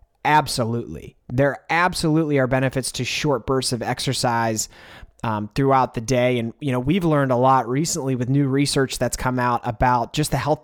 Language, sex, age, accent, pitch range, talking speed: English, male, 20-39, American, 115-145 Hz, 180 wpm